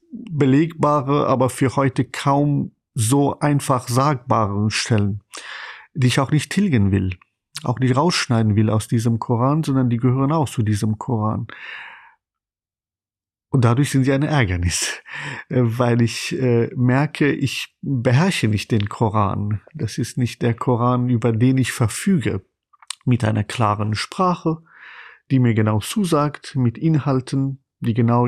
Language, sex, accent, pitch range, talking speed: German, male, German, 115-145 Hz, 135 wpm